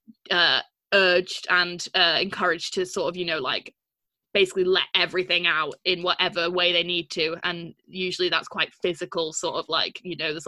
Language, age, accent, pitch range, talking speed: English, 20-39, British, 175-195 Hz, 185 wpm